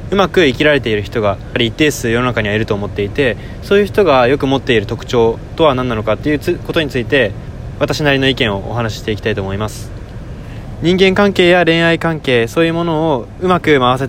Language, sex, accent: Japanese, male, native